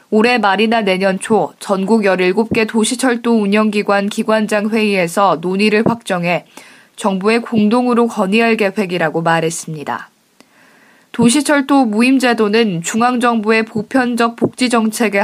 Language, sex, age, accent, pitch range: Korean, female, 20-39, native, 200-245 Hz